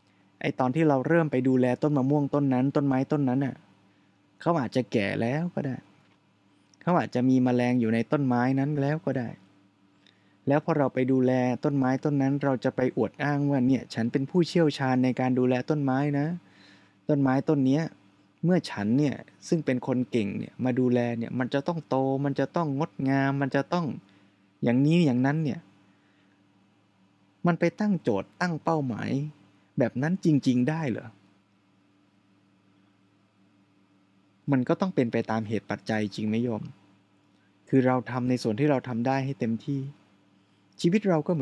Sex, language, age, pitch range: male, Thai, 20-39, 100-140 Hz